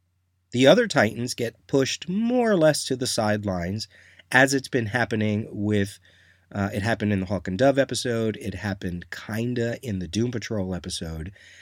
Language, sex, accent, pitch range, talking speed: English, male, American, 95-120 Hz, 170 wpm